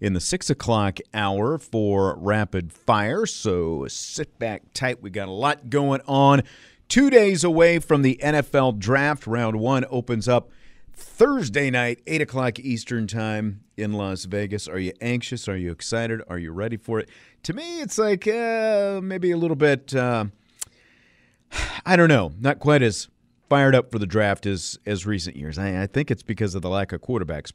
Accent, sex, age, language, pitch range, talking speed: American, male, 40-59, English, 100-140 Hz, 185 wpm